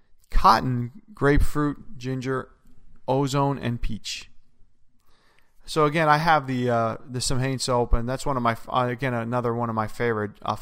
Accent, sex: American, male